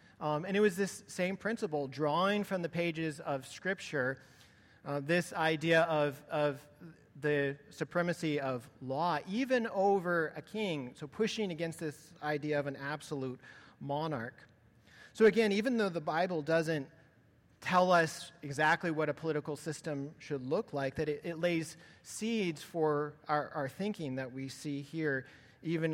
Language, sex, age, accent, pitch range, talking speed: English, male, 40-59, American, 140-170 Hz, 155 wpm